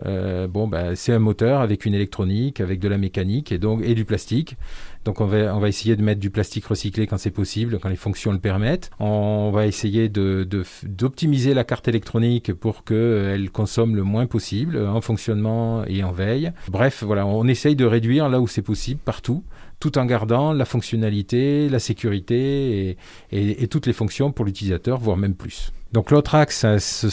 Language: French